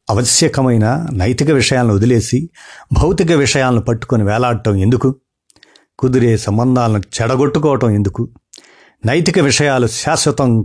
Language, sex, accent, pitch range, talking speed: Telugu, male, native, 115-150 Hz, 90 wpm